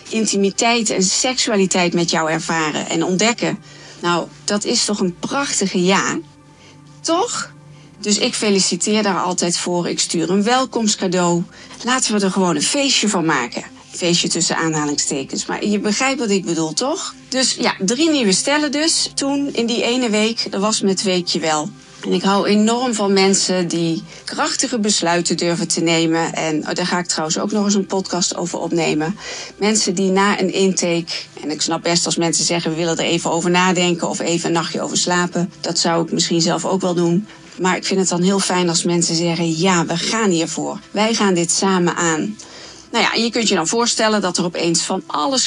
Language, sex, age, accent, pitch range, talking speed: Dutch, female, 40-59, Dutch, 170-215 Hz, 195 wpm